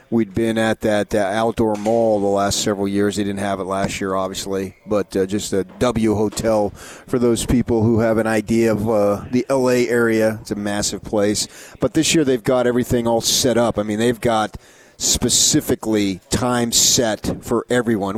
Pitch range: 105-120 Hz